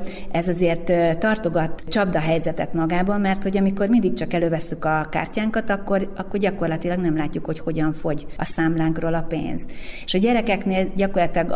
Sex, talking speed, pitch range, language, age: female, 150 wpm, 160-195 Hz, Hungarian, 30-49